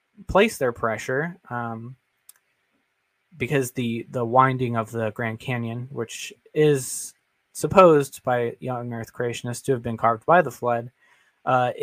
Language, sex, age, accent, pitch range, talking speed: English, male, 20-39, American, 115-140 Hz, 135 wpm